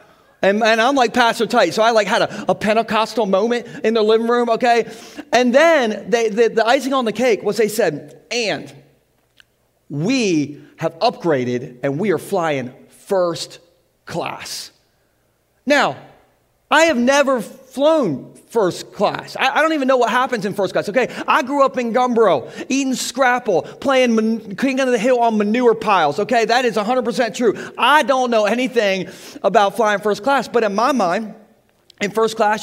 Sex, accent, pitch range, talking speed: male, American, 205-250 Hz, 170 wpm